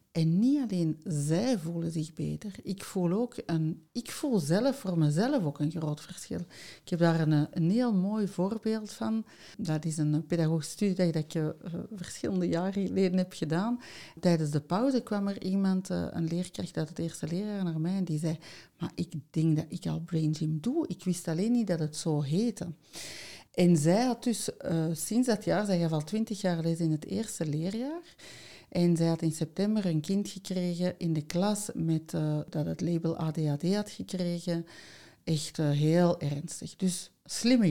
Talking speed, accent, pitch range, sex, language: 190 wpm, Dutch, 160-190 Hz, female, Dutch